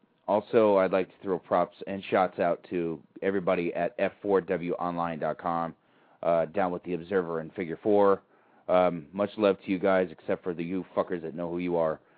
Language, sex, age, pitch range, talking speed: English, male, 30-49, 85-100 Hz, 170 wpm